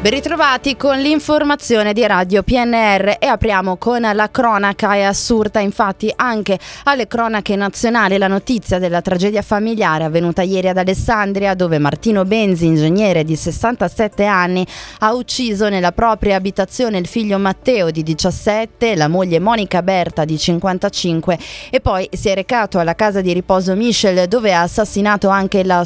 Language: Italian